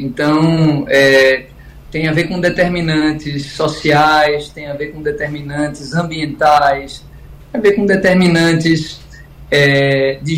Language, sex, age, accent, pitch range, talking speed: Portuguese, male, 20-39, Brazilian, 150-185 Hz, 110 wpm